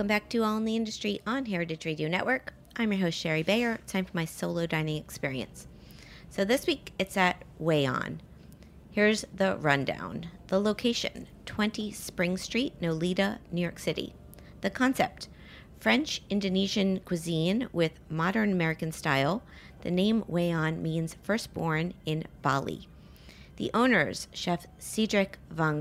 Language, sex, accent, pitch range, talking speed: English, female, American, 155-205 Hz, 140 wpm